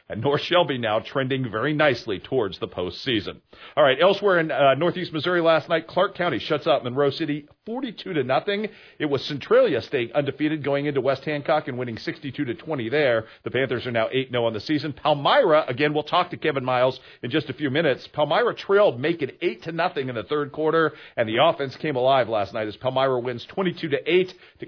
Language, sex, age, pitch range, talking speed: English, male, 50-69, 130-175 Hz, 210 wpm